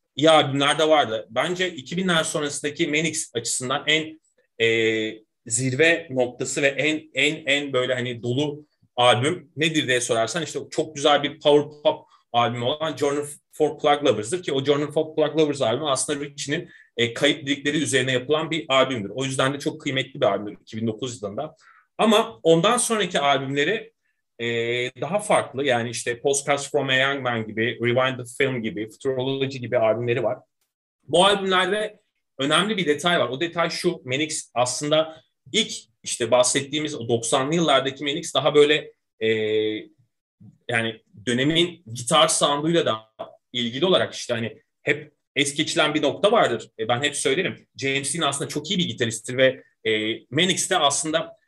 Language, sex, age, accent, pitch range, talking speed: Turkish, male, 30-49, native, 125-155 Hz, 155 wpm